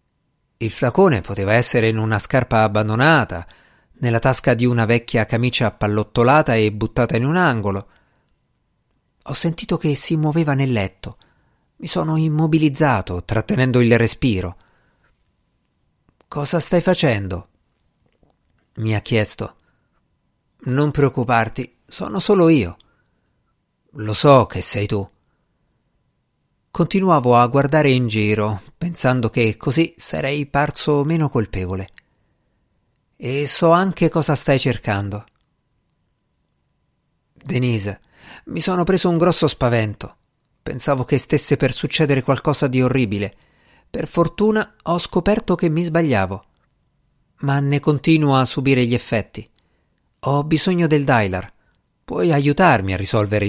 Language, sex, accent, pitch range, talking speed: Italian, male, native, 105-155 Hz, 115 wpm